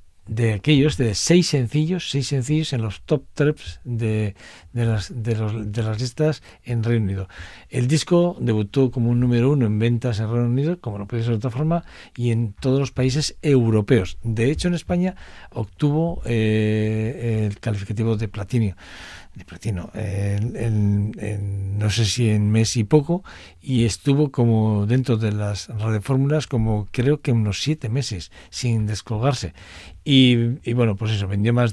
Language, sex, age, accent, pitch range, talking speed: Spanish, male, 60-79, Spanish, 110-135 Hz, 165 wpm